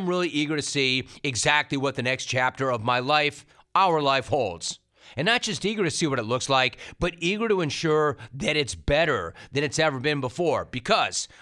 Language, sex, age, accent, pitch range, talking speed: English, male, 40-59, American, 130-160 Hz, 200 wpm